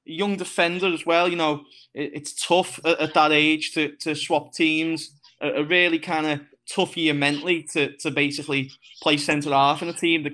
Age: 20-39